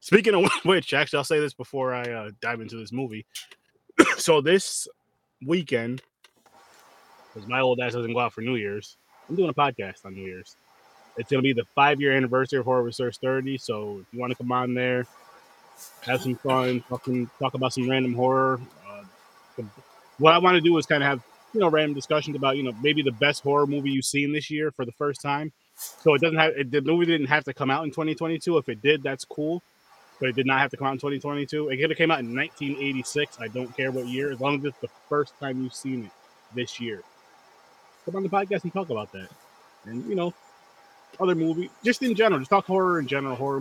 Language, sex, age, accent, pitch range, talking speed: English, male, 20-39, American, 125-150 Hz, 230 wpm